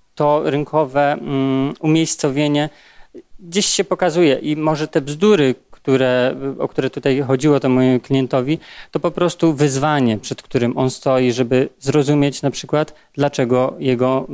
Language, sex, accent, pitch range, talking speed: Polish, male, native, 125-145 Hz, 135 wpm